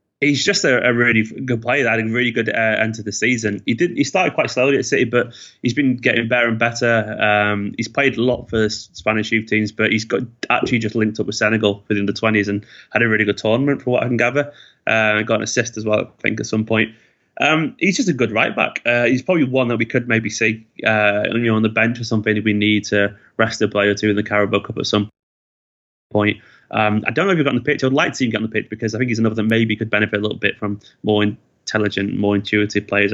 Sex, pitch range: male, 105-120 Hz